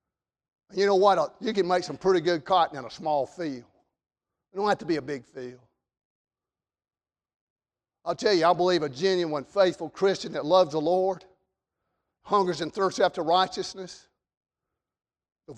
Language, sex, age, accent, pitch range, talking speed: English, male, 50-69, American, 145-195 Hz, 160 wpm